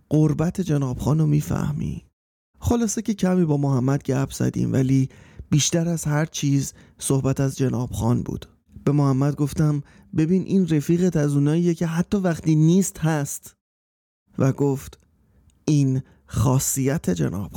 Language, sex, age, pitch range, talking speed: Persian, male, 30-49, 130-165 Hz, 130 wpm